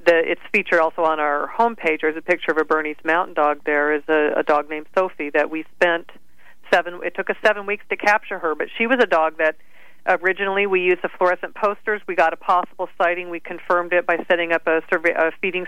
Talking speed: 225 wpm